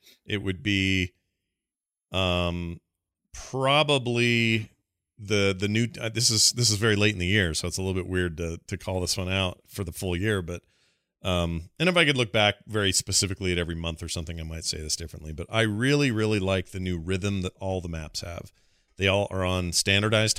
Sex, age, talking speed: male, 40-59, 210 wpm